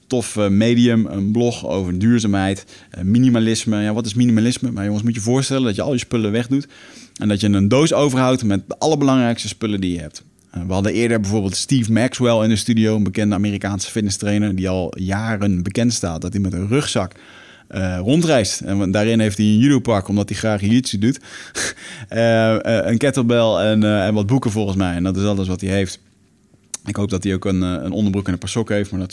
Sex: male